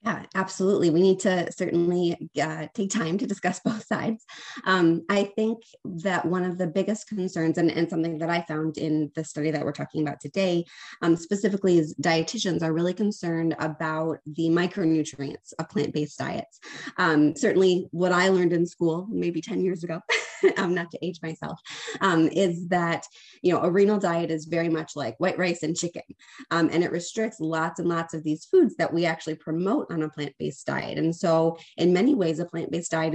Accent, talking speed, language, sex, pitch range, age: American, 195 wpm, English, female, 160-195 Hz, 20-39